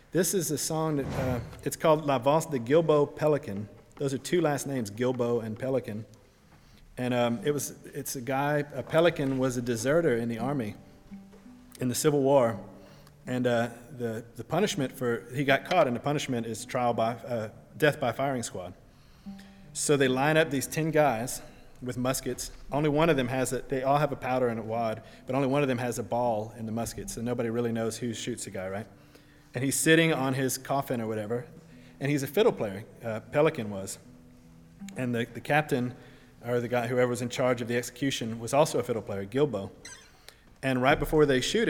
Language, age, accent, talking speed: English, 30-49, American, 205 wpm